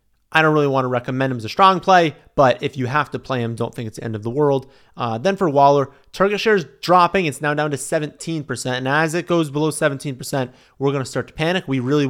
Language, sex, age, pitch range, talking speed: English, male, 30-49, 120-150 Hz, 265 wpm